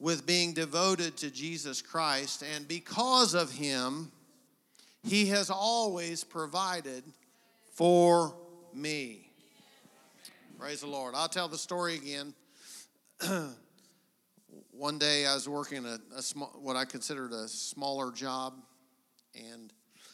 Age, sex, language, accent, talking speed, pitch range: 50-69, male, English, American, 115 wpm, 130-180 Hz